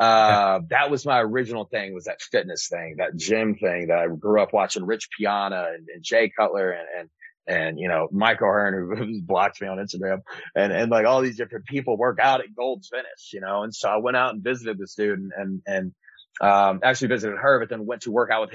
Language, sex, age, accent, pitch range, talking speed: English, male, 30-49, American, 100-125 Hz, 235 wpm